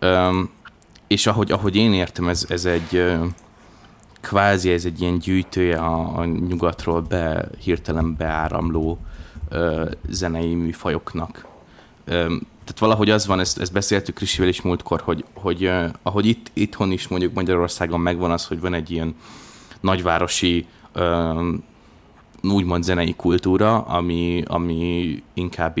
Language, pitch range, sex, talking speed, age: Hungarian, 85-95 Hz, male, 135 wpm, 20-39